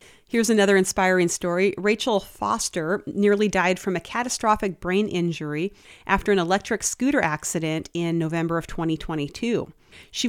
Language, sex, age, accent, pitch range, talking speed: English, female, 40-59, American, 175-210 Hz, 135 wpm